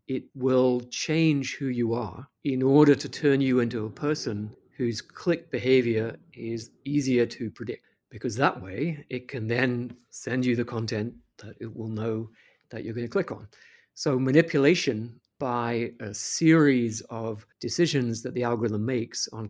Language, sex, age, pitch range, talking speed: English, male, 50-69, 110-130 Hz, 165 wpm